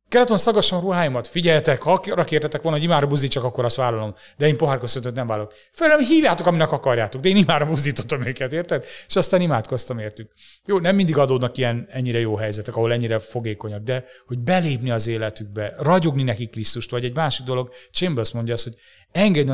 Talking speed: 185 wpm